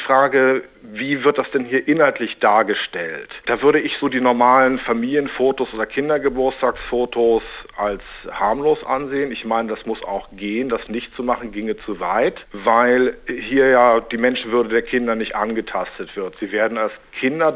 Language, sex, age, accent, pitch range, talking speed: German, male, 50-69, German, 115-140 Hz, 160 wpm